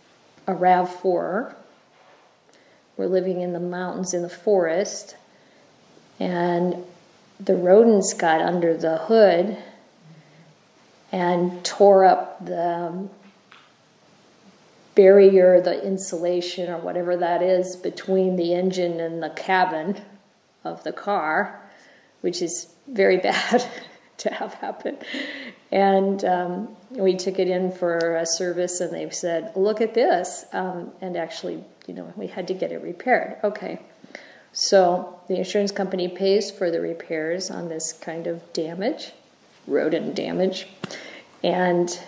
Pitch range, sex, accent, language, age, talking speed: 175-195 Hz, female, American, English, 50-69, 125 wpm